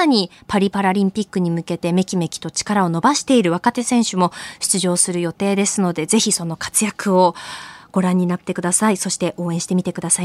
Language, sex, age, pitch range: Japanese, female, 20-39, 190-290 Hz